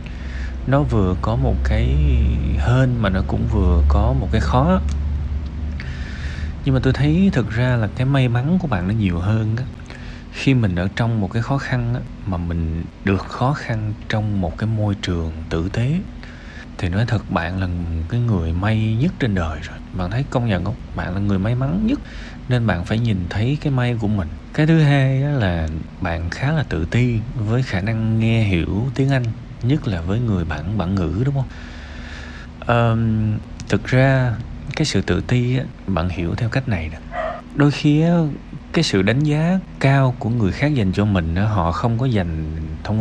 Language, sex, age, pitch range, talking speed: Vietnamese, male, 20-39, 85-125 Hz, 195 wpm